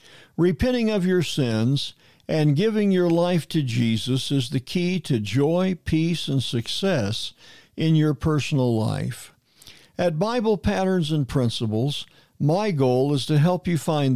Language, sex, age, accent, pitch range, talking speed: English, male, 50-69, American, 125-175 Hz, 145 wpm